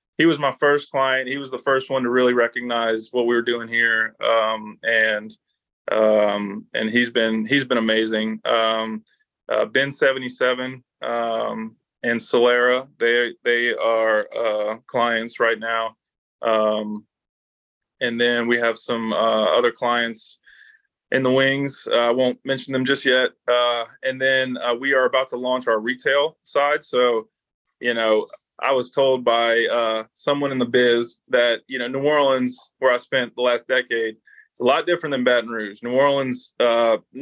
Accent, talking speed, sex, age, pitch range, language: American, 170 wpm, male, 20-39, 115-135 Hz, English